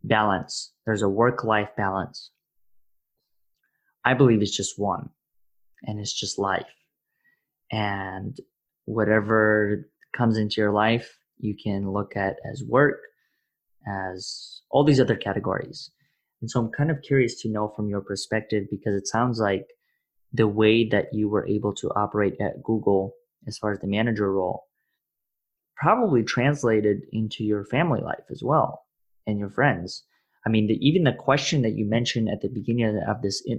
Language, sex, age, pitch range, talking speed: English, male, 20-39, 105-125 Hz, 150 wpm